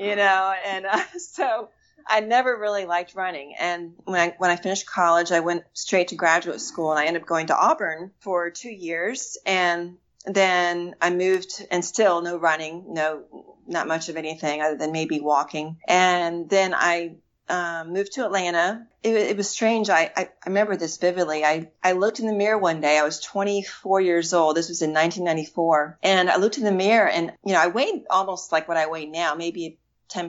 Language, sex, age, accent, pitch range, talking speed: English, female, 40-59, American, 165-205 Hz, 205 wpm